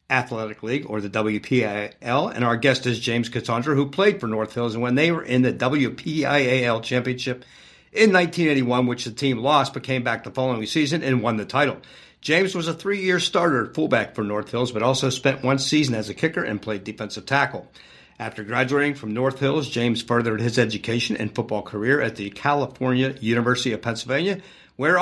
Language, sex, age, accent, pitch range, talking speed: English, male, 50-69, American, 120-150 Hz, 195 wpm